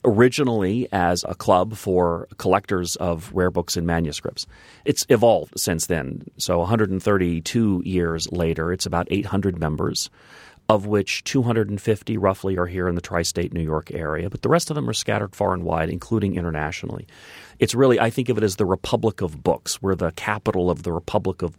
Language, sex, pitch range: English, male, 85-105 Hz